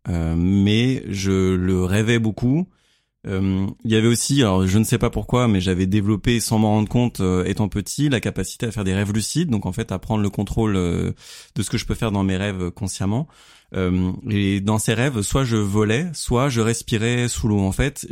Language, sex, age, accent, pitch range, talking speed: French, male, 30-49, French, 100-125 Hz, 220 wpm